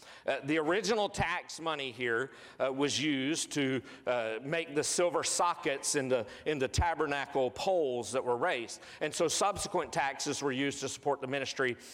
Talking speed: 170 wpm